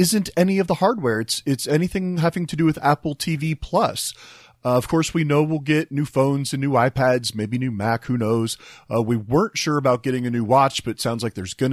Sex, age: male, 30-49